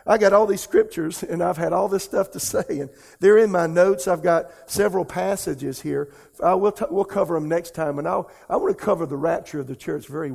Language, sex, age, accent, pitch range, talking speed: English, male, 50-69, American, 155-190 Hz, 250 wpm